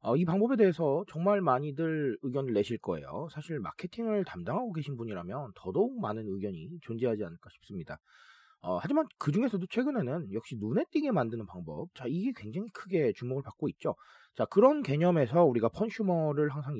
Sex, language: male, Korean